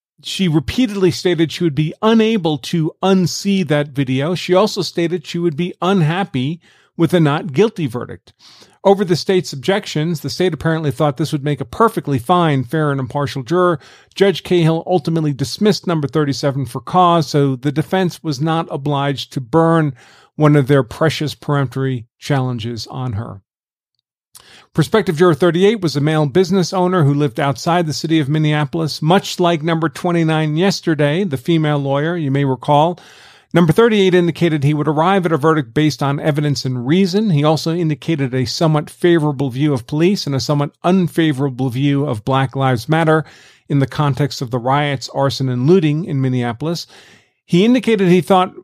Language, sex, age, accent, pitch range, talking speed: English, male, 40-59, American, 140-180 Hz, 170 wpm